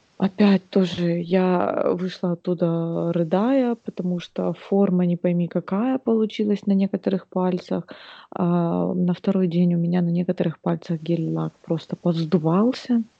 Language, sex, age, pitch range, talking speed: Russian, female, 20-39, 170-200 Hz, 125 wpm